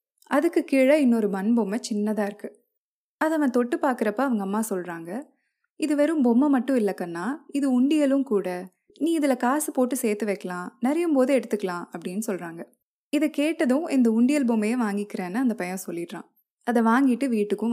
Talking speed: 150 wpm